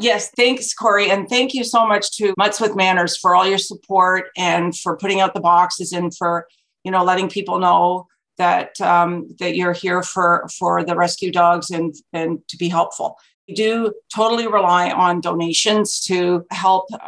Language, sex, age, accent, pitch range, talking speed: English, female, 50-69, American, 175-195 Hz, 185 wpm